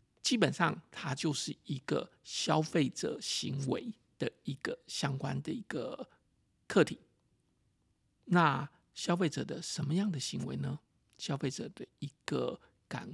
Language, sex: Chinese, male